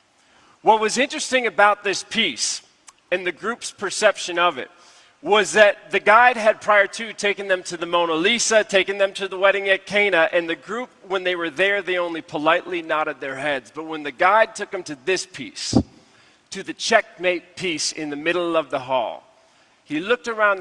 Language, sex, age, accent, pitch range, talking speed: English, male, 40-59, American, 155-195 Hz, 195 wpm